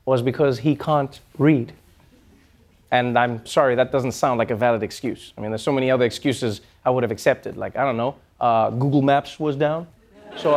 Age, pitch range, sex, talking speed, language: 20-39, 140-230 Hz, male, 205 wpm, English